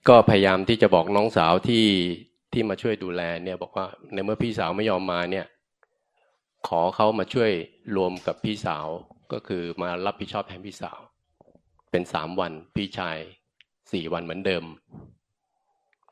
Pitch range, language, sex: 90-105 Hz, Thai, male